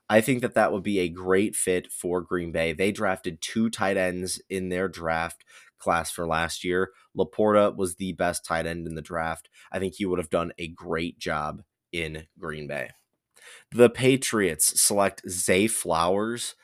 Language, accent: English, American